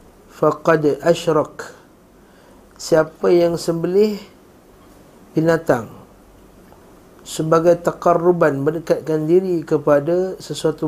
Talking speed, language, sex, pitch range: 65 wpm, Malay, male, 145-170 Hz